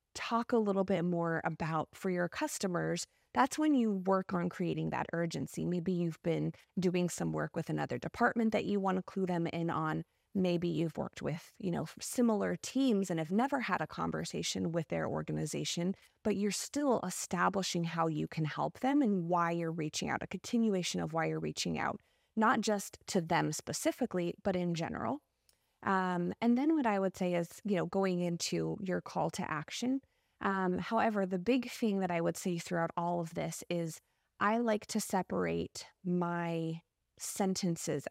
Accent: American